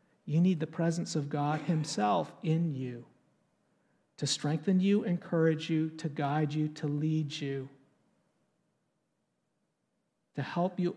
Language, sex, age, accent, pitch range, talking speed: English, male, 50-69, American, 150-170 Hz, 125 wpm